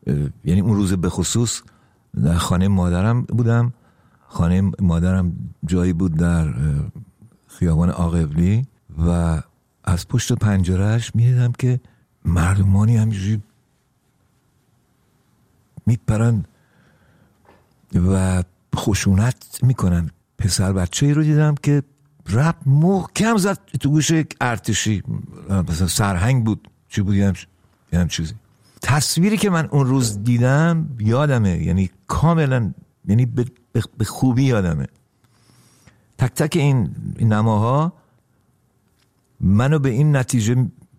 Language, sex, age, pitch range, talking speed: Persian, male, 50-69, 90-125 Hz, 100 wpm